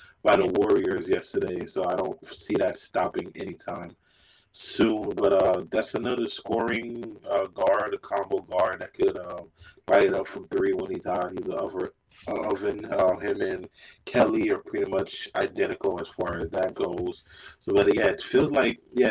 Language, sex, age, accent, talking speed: English, male, 30-49, American, 180 wpm